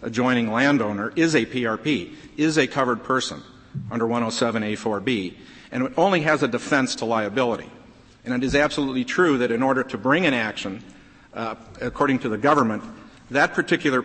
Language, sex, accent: English, male, American